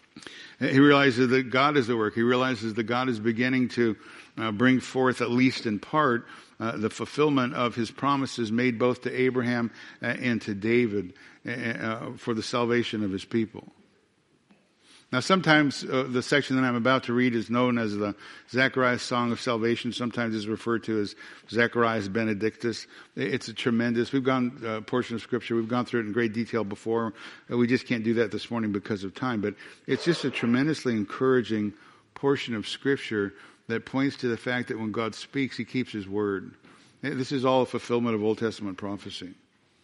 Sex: male